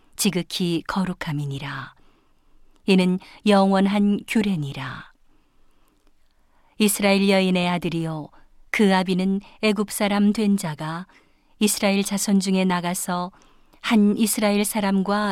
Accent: native